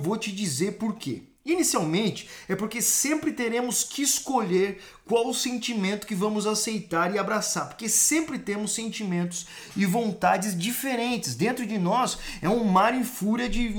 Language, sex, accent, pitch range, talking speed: Portuguese, male, Brazilian, 190-245 Hz, 155 wpm